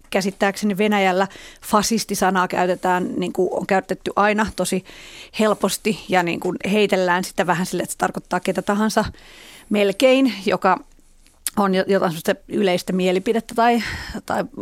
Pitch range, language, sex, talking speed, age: 185-225 Hz, Finnish, female, 125 wpm, 30-49